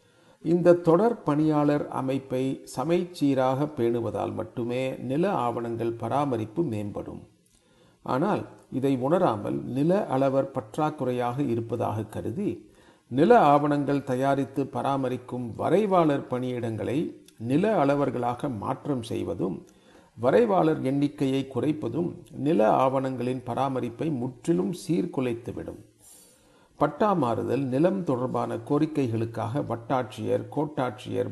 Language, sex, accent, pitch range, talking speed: Tamil, male, native, 125-150 Hz, 85 wpm